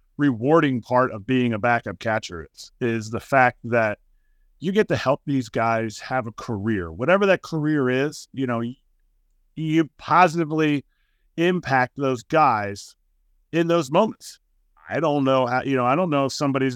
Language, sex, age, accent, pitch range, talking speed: English, male, 40-59, American, 125-165 Hz, 165 wpm